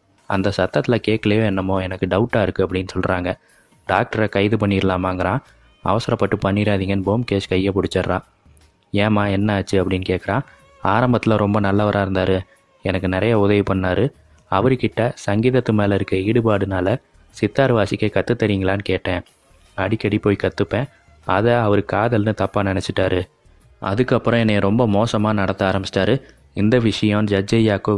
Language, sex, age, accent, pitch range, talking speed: Tamil, male, 20-39, native, 95-110 Hz, 120 wpm